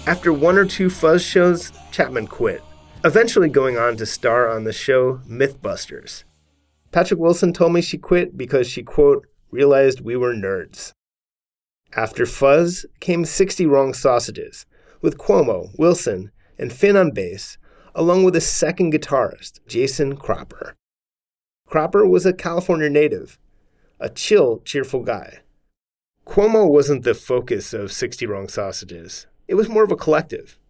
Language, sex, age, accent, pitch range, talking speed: English, male, 30-49, American, 130-190 Hz, 145 wpm